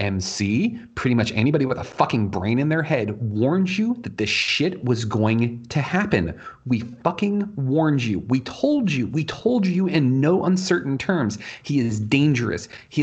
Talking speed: 175 wpm